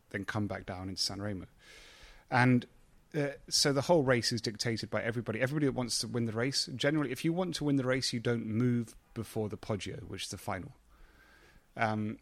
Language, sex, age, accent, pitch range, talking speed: English, male, 30-49, British, 105-125 Hz, 210 wpm